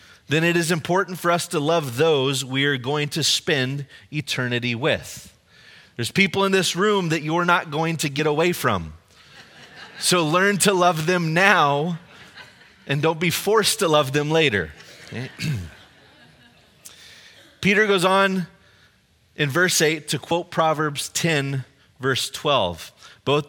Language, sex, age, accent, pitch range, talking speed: English, male, 30-49, American, 120-160 Hz, 145 wpm